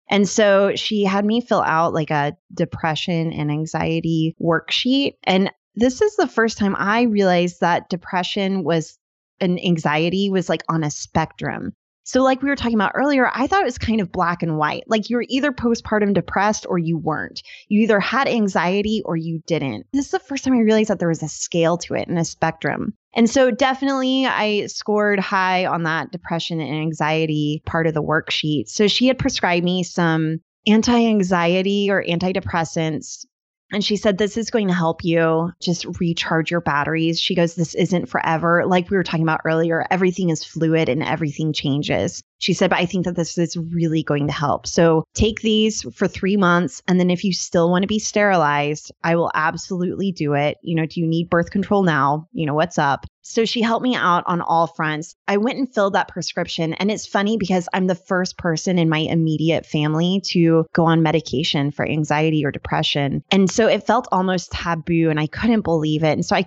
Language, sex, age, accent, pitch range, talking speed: English, female, 20-39, American, 160-205 Hz, 205 wpm